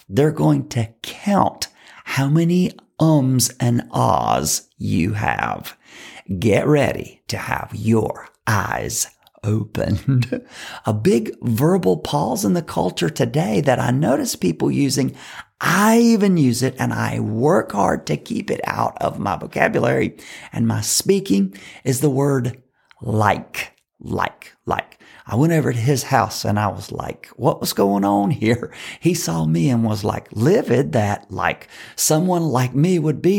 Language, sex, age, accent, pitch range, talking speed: English, male, 50-69, American, 110-155 Hz, 150 wpm